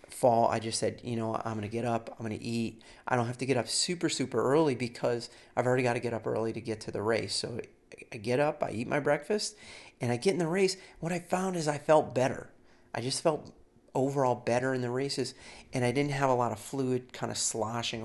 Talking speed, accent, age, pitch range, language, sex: 255 wpm, American, 40-59, 115-140 Hz, English, male